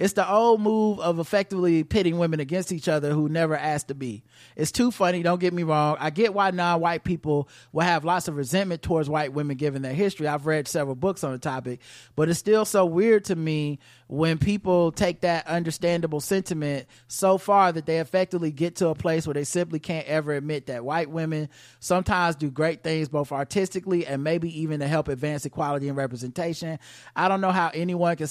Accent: American